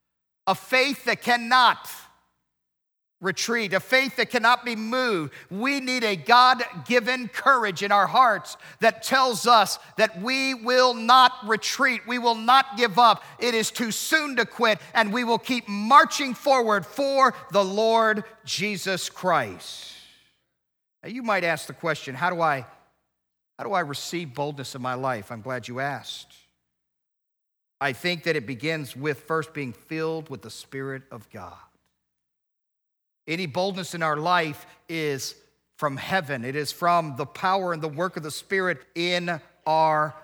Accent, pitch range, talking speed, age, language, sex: American, 145-200 Hz, 155 wpm, 50-69, English, male